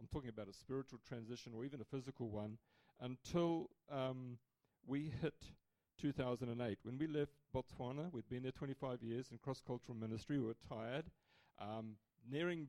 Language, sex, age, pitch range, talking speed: English, male, 40-59, 115-155 Hz, 155 wpm